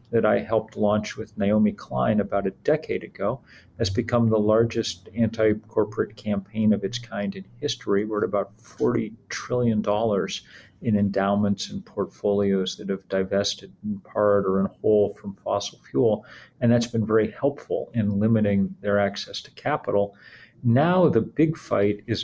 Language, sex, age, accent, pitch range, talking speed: English, male, 40-59, American, 100-115 Hz, 155 wpm